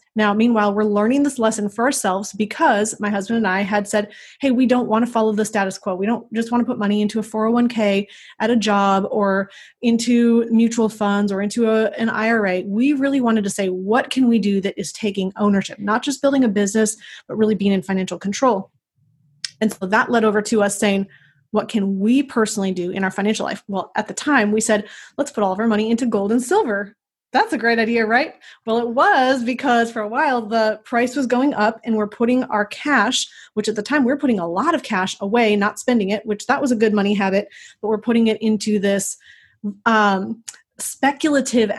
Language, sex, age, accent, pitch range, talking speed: English, female, 30-49, American, 205-240 Hz, 220 wpm